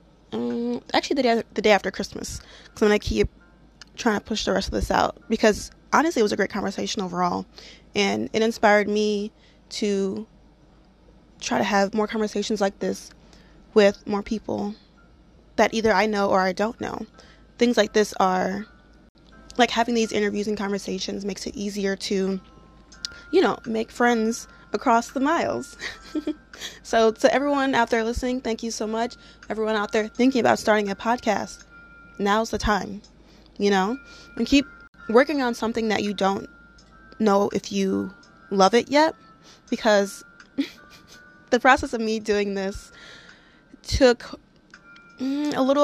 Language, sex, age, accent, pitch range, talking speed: English, female, 20-39, American, 200-235 Hz, 155 wpm